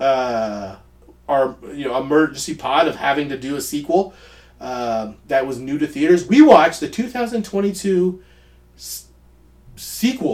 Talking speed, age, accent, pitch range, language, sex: 140 wpm, 30-49, American, 130-195 Hz, English, male